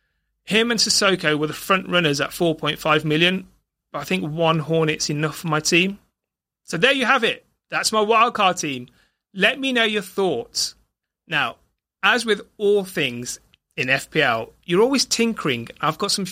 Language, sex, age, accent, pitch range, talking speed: English, male, 30-49, British, 145-195 Hz, 170 wpm